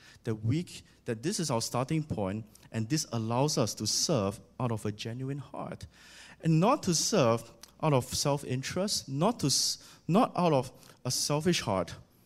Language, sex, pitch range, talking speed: English, male, 105-135 Hz, 165 wpm